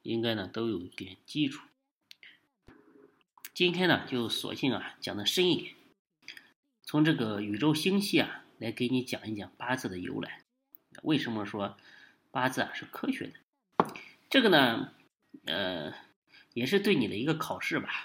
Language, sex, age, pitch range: Chinese, male, 20-39, 115-180 Hz